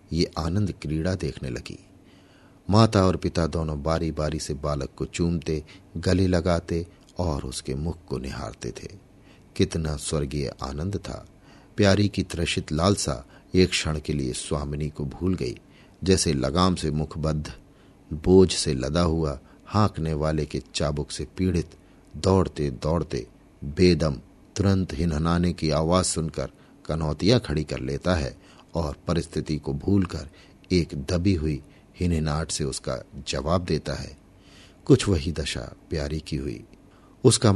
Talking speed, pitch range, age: 135 wpm, 75-95 Hz, 50-69